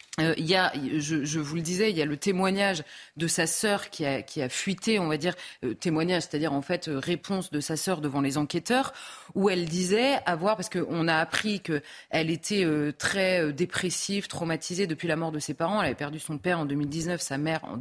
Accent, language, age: French, French, 30-49